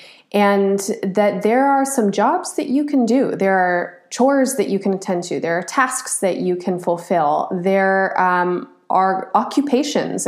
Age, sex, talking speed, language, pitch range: 30-49, female, 170 wpm, English, 175-210 Hz